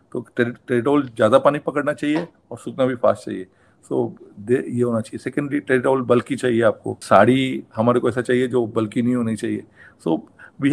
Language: Hindi